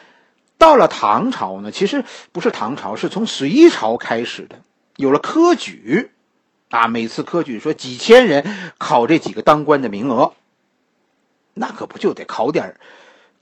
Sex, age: male, 50-69